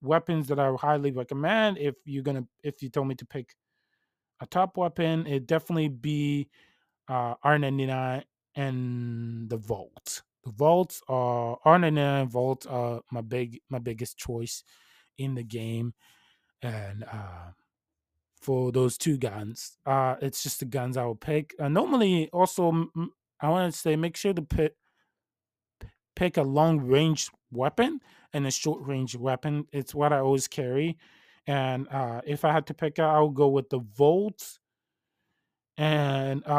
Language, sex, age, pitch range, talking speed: English, male, 20-39, 125-155 Hz, 160 wpm